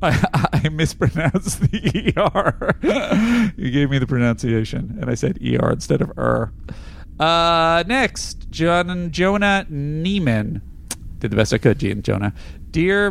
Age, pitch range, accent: 40-59, 125-175 Hz, American